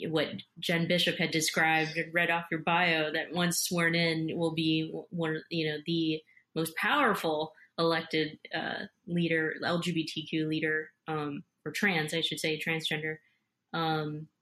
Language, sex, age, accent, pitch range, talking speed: English, female, 20-39, American, 155-185 Hz, 150 wpm